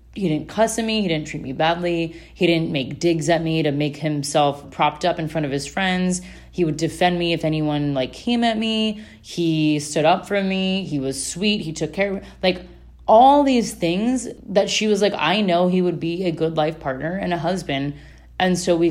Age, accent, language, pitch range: 20-39, American, English, 155-190 Hz